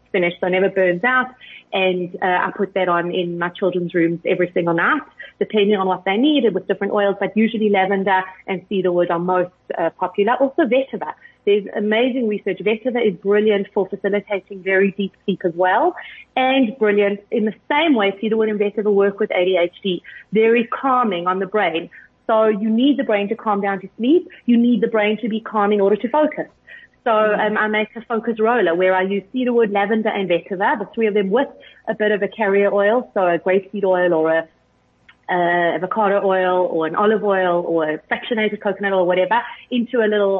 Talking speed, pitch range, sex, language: 205 wpm, 185-220 Hz, female, English